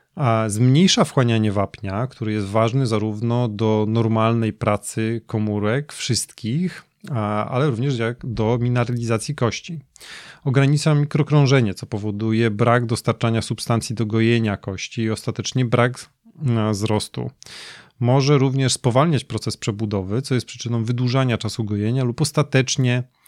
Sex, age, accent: male, 30-49, native